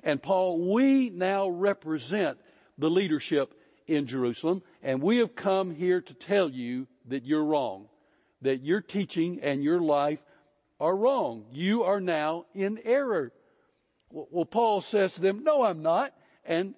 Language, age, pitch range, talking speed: English, 60-79, 155-220 Hz, 150 wpm